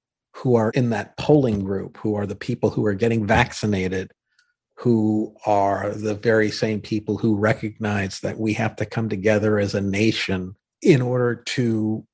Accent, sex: American, male